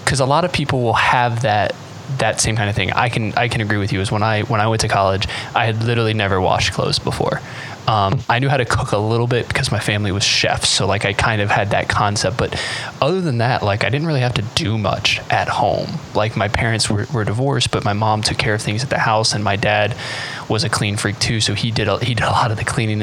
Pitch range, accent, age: 105-130 Hz, American, 20-39